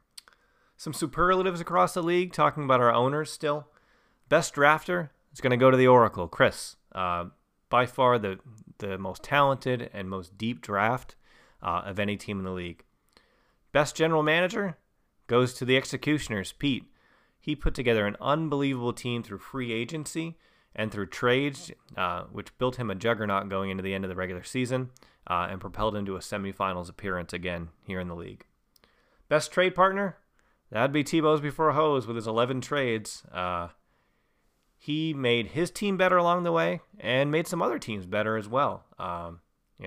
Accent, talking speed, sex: American, 175 wpm, male